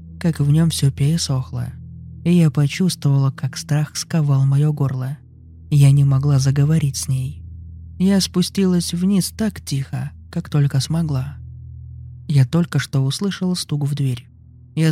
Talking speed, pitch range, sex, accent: 140 wpm, 130-165 Hz, male, native